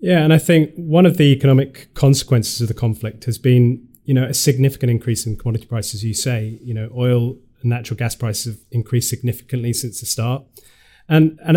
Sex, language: male, English